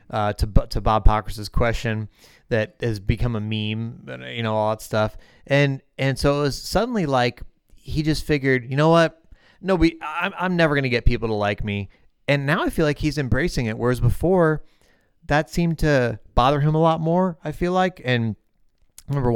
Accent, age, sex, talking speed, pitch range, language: American, 30-49, male, 200 wpm, 100-135 Hz, English